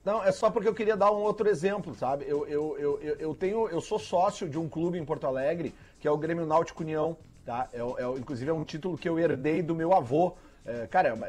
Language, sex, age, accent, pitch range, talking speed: Portuguese, male, 40-59, Brazilian, 150-205 Hz, 250 wpm